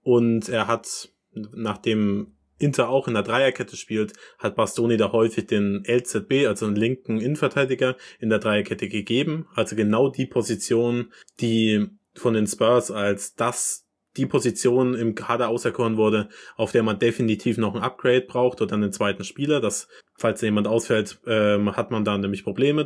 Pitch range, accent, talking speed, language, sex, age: 110-135 Hz, German, 165 wpm, German, male, 20-39